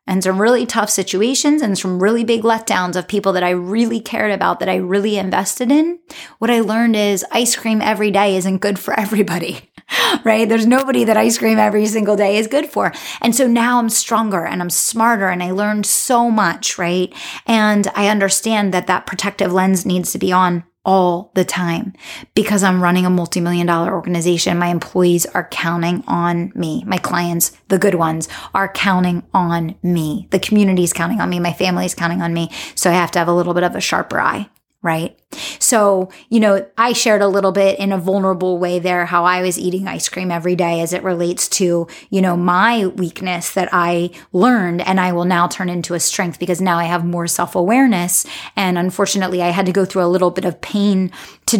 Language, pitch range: English, 175-215 Hz